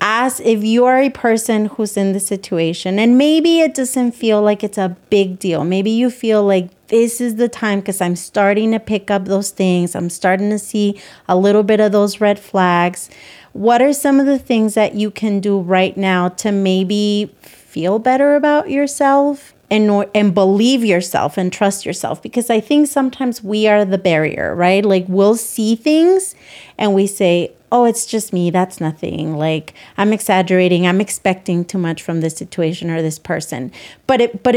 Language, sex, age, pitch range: English, female, 30-49, 185-230 Hz